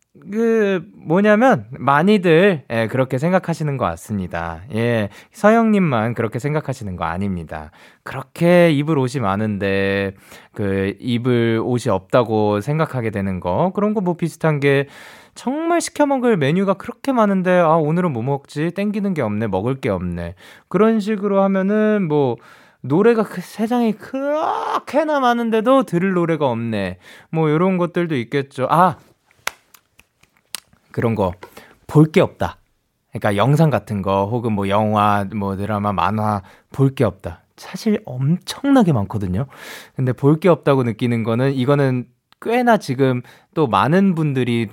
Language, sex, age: Korean, male, 20-39